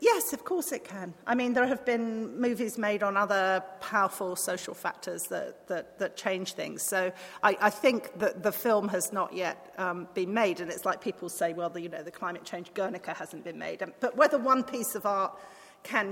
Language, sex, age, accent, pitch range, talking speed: English, female, 40-59, British, 185-235 Hz, 210 wpm